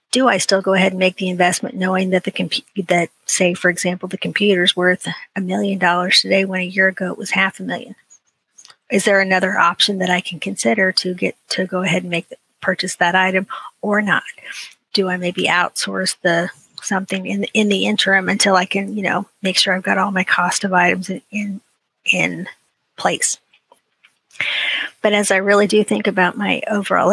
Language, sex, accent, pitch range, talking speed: English, female, American, 185-200 Hz, 205 wpm